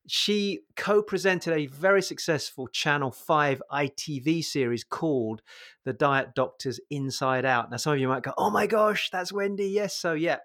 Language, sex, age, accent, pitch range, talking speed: English, male, 30-49, British, 135-175 Hz, 165 wpm